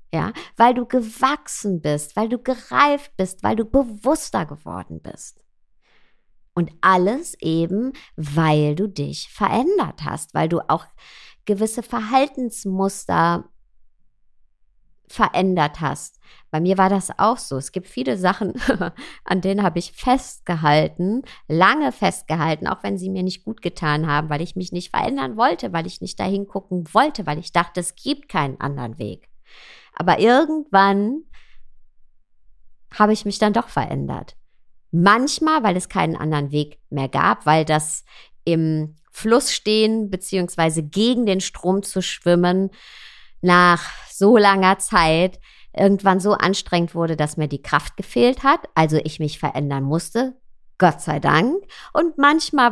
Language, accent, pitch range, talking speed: German, German, 160-225 Hz, 140 wpm